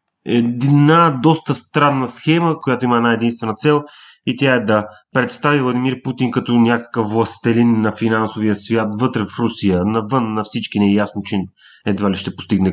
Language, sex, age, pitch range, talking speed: Bulgarian, male, 30-49, 110-155 Hz, 160 wpm